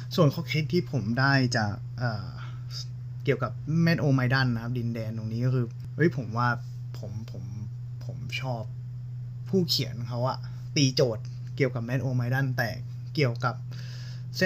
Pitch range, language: 120-130 Hz, Thai